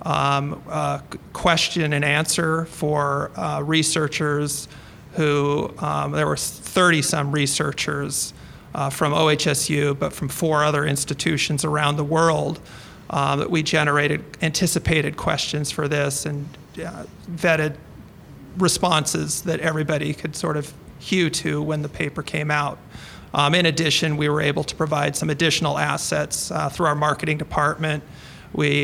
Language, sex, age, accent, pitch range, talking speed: English, male, 40-59, American, 145-160 Hz, 140 wpm